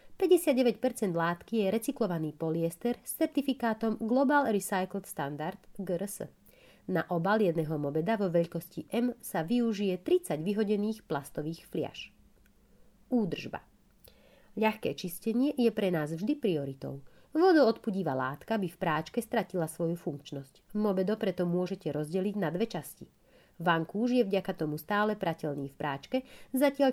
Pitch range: 165-230 Hz